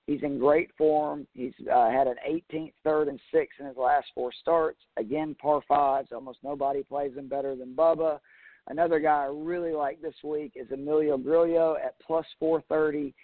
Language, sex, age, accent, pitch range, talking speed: English, male, 50-69, American, 145-165 Hz, 180 wpm